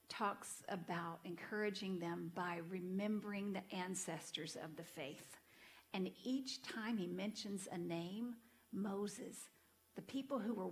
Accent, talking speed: American, 130 wpm